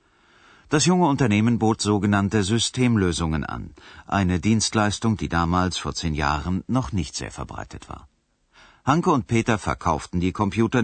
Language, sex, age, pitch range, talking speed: Bulgarian, male, 50-69, 85-120 Hz, 140 wpm